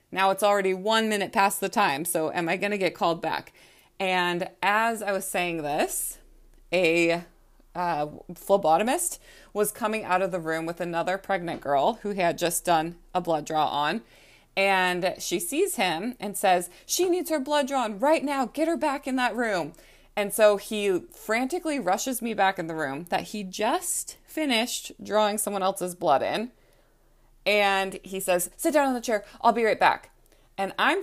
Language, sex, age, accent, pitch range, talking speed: English, female, 20-39, American, 170-210 Hz, 185 wpm